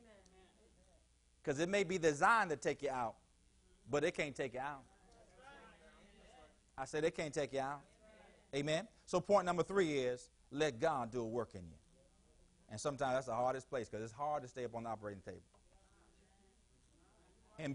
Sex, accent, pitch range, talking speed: male, American, 105-155 Hz, 175 wpm